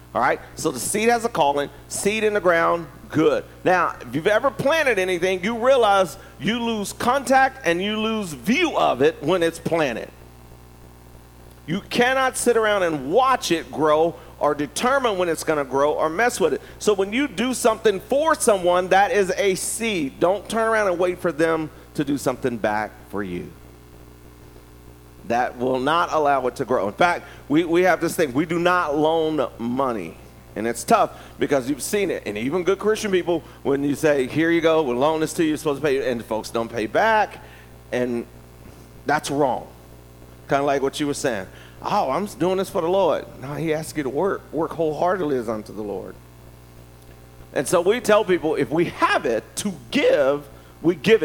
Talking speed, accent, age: 200 wpm, American, 40-59